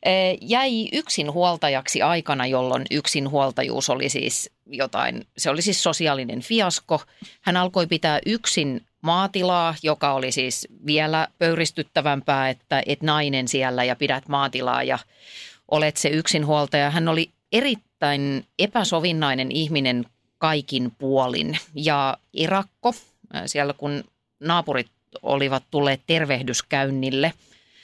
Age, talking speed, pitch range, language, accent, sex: 30-49, 105 wpm, 145-225 Hz, Finnish, native, female